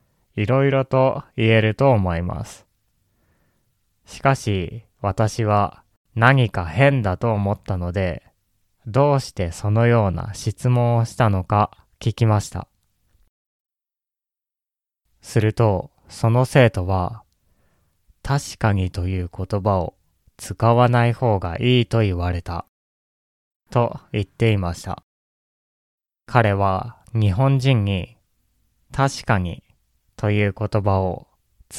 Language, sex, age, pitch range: Japanese, male, 20-39, 95-120 Hz